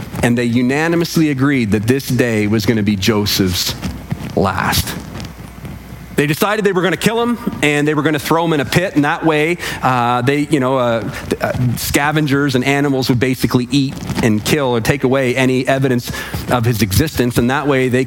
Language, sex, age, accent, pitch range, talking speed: English, male, 40-59, American, 125-180 Hz, 190 wpm